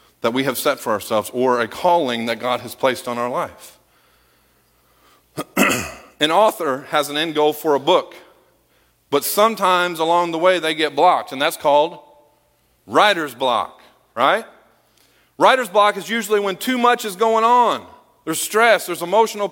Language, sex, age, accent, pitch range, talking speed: English, male, 40-59, American, 135-200 Hz, 165 wpm